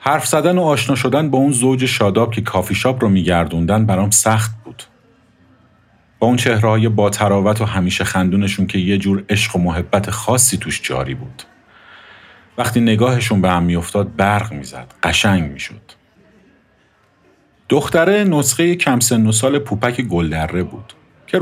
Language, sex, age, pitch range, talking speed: Persian, male, 50-69, 95-130 Hz, 150 wpm